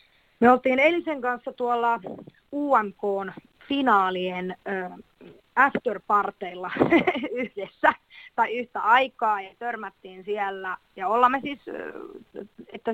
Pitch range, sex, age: 185-235 Hz, female, 30-49